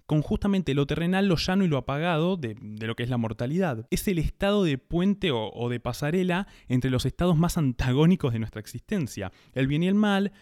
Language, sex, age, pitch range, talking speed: Spanish, male, 20-39, 115-170 Hz, 220 wpm